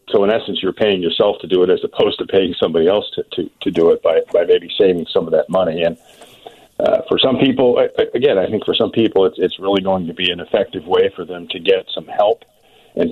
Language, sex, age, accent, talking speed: English, male, 50-69, American, 250 wpm